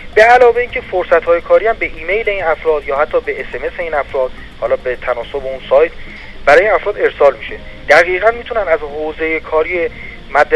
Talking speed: 180 wpm